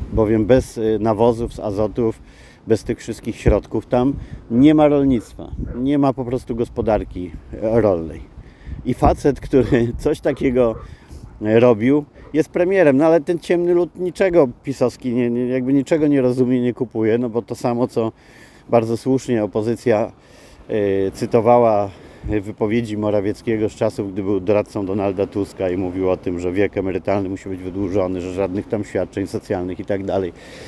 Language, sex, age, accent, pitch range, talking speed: Polish, male, 40-59, native, 105-125 Hz, 150 wpm